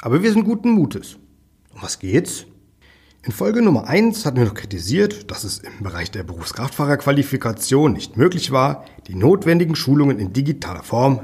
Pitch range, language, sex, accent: 100-150 Hz, German, male, German